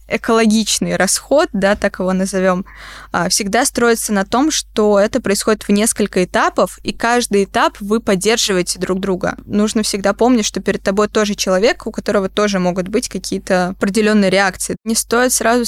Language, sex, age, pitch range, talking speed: Russian, female, 20-39, 195-230 Hz, 160 wpm